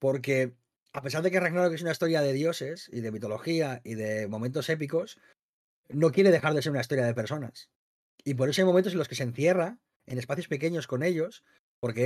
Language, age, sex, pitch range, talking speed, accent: Spanish, 30-49, male, 135-180 Hz, 215 wpm, Spanish